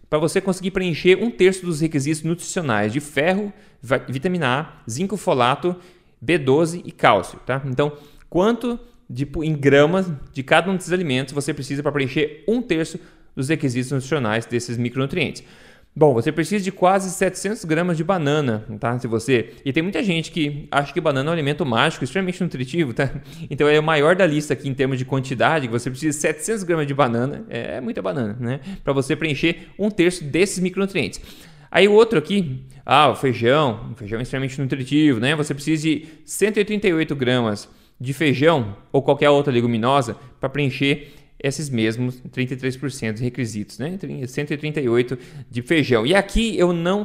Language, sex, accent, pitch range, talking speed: Portuguese, male, Brazilian, 130-180 Hz, 170 wpm